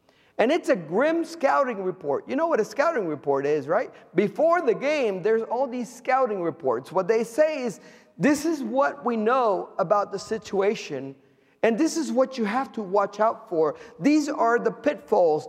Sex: male